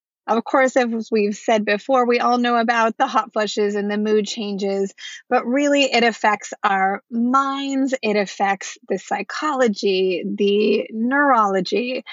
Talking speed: 145 wpm